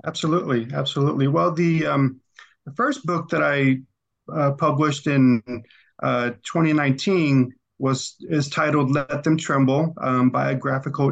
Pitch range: 130-150 Hz